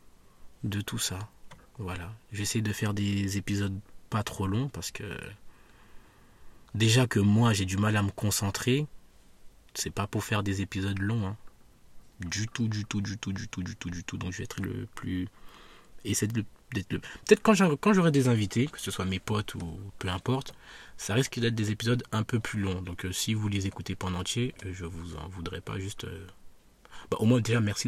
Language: French